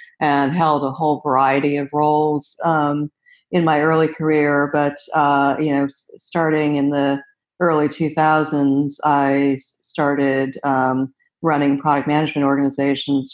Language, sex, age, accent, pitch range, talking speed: English, female, 50-69, American, 140-155 Hz, 125 wpm